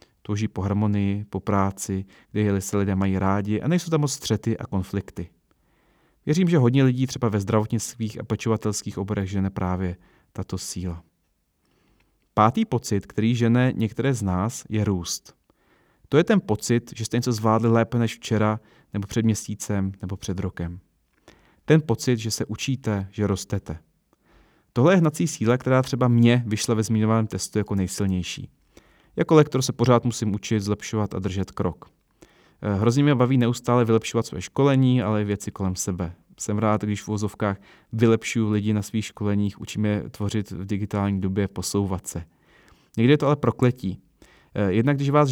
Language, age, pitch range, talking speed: Czech, 30-49, 100-120 Hz, 165 wpm